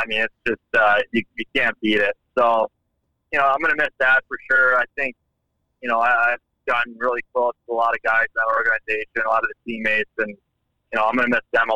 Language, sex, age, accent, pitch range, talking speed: English, male, 30-49, American, 105-120 Hz, 260 wpm